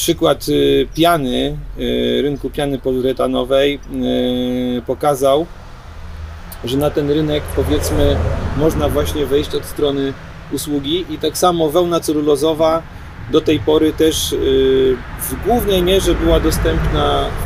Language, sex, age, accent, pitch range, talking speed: Polish, male, 40-59, native, 130-165 Hz, 110 wpm